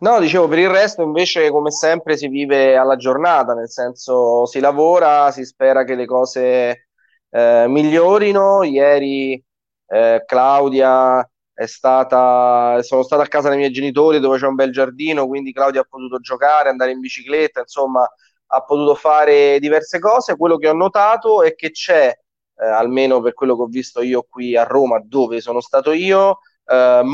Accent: native